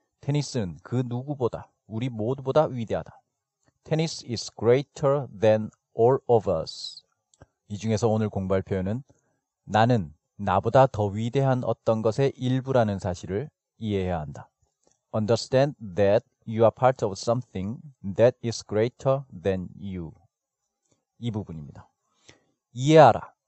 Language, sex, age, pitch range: Korean, male, 40-59, 105-140 Hz